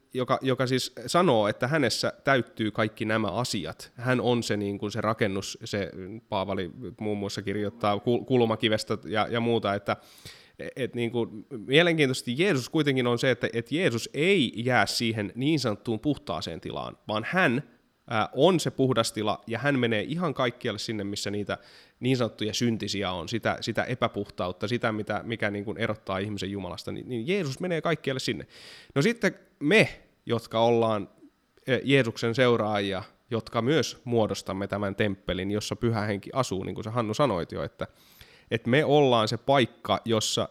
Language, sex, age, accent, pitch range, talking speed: Finnish, male, 20-39, native, 105-125 Hz, 165 wpm